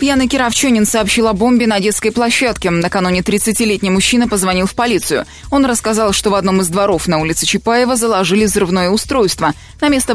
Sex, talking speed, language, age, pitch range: female, 170 wpm, Russian, 20-39, 185-240 Hz